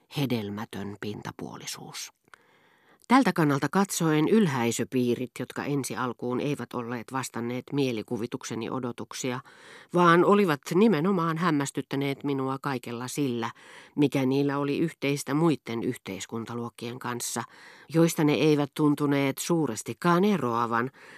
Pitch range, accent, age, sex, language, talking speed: 120-165 Hz, native, 40-59, female, Finnish, 95 wpm